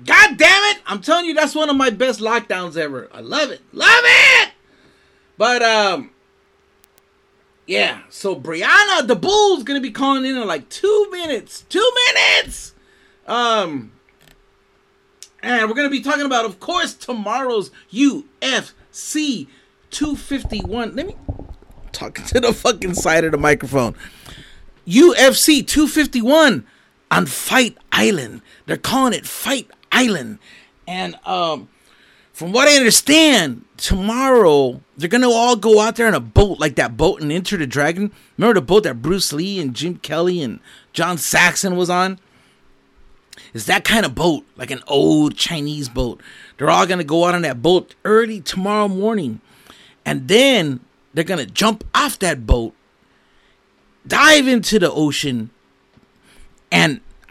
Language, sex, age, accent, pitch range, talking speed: English, male, 40-59, American, 170-280 Hz, 150 wpm